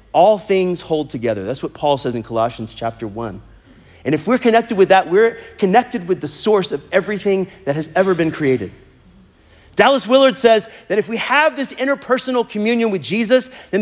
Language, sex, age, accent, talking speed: English, male, 30-49, American, 185 wpm